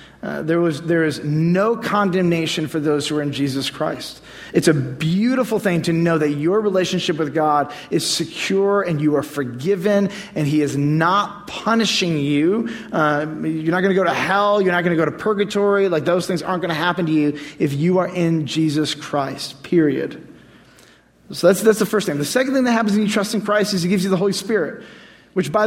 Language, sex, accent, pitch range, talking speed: English, male, American, 150-200 Hz, 215 wpm